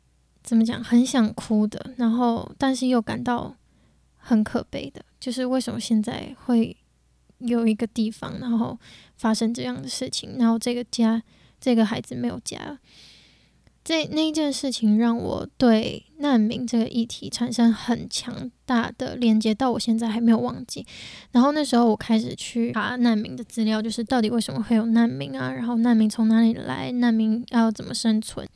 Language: Chinese